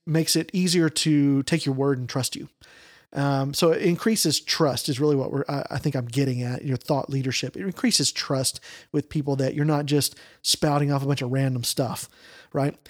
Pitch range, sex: 145-180 Hz, male